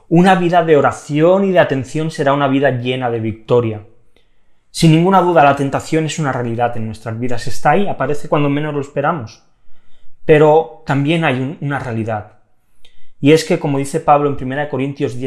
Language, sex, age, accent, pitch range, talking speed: Spanish, male, 30-49, Spanish, 120-155 Hz, 180 wpm